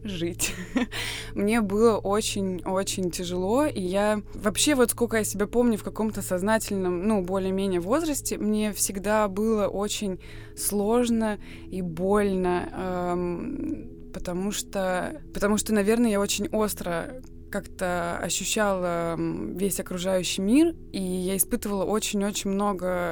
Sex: female